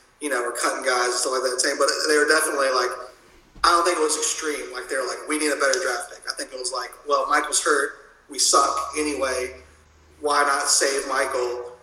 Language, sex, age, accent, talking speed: English, male, 30-49, American, 230 wpm